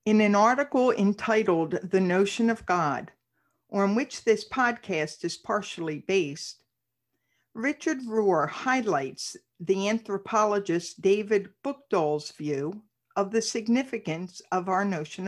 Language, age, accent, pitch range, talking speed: English, 50-69, American, 185-245 Hz, 115 wpm